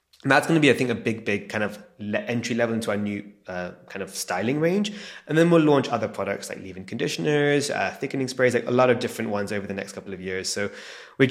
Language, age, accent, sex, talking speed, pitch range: English, 20-39, British, male, 255 wpm, 105-145 Hz